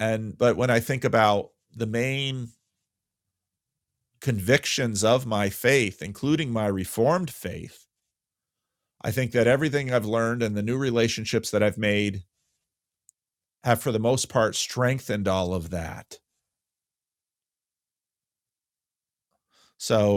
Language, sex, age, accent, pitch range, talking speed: English, male, 40-59, American, 95-120 Hz, 115 wpm